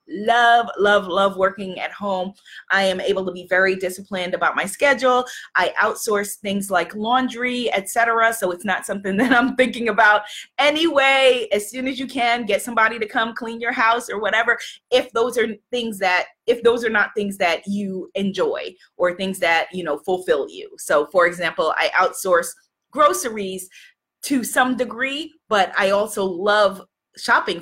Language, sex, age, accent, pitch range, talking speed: English, female, 30-49, American, 185-245 Hz, 170 wpm